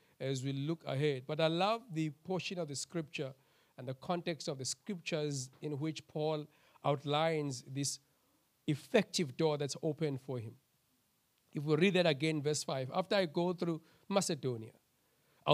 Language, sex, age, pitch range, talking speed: English, male, 50-69, 135-170 Hz, 160 wpm